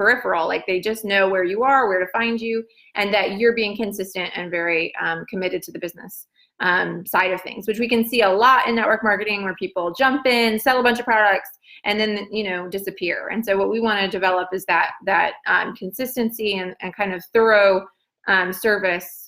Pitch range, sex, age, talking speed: 190-235 Hz, female, 20-39, 220 wpm